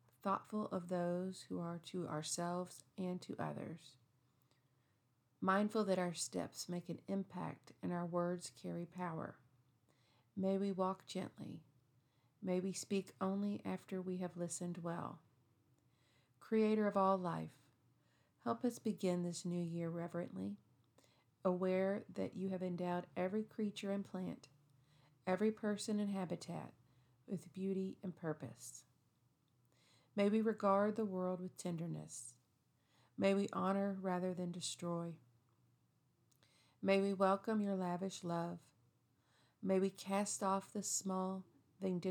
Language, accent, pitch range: English, American, 130-190 Hz